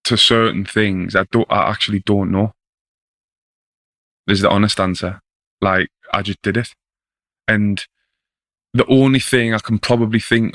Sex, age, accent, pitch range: male, 20-39, British, 100-110 Hz